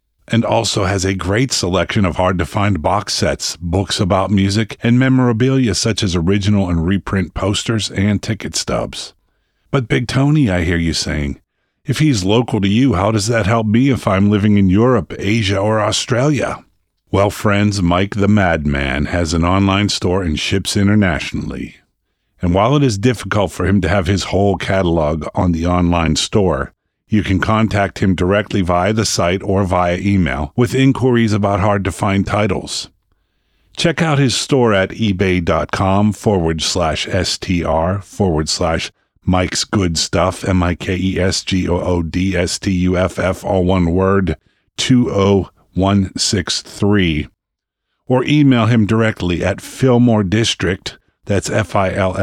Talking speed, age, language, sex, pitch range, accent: 160 wpm, 50-69, English, male, 90-110 Hz, American